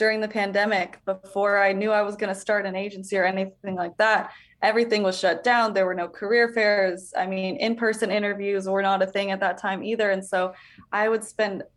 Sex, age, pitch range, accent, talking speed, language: female, 20-39, 195-225 Hz, American, 220 wpm, English